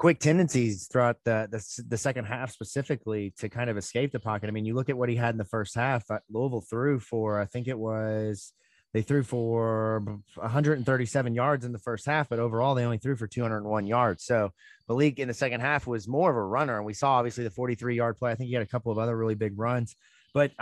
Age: 30-49